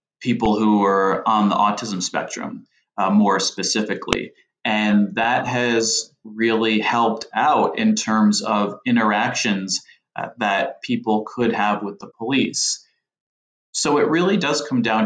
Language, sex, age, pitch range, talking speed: English, male, 20-39, 95-115 Hz, 135 wpm